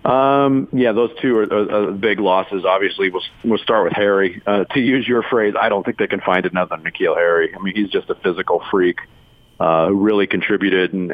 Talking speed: 215 wpm